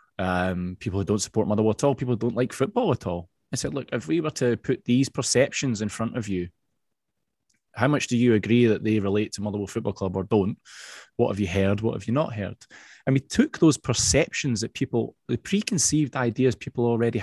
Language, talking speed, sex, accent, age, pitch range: English, 225 wpm, male, British, 20-39, 110-135 Hz